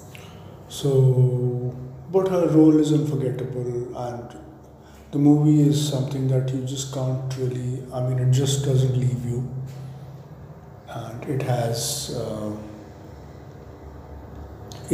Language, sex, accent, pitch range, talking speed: English, male, Indian, 120-140 Hz, 110 wpm